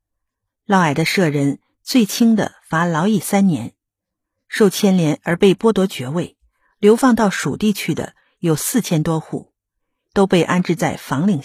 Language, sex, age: Chinese, female, 50-69